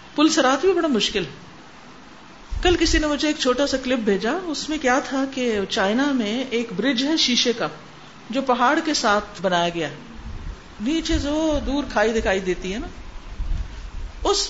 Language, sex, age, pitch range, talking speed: Urdu, female, 50-69, 200-295 Hz, 170 wpm